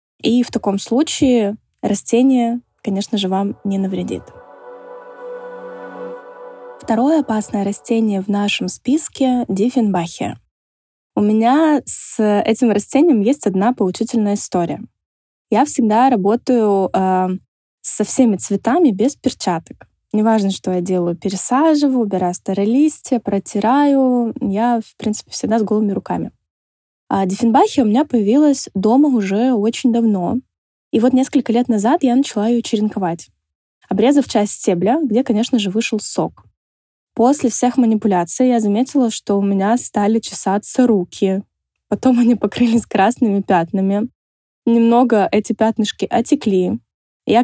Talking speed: 125 wpm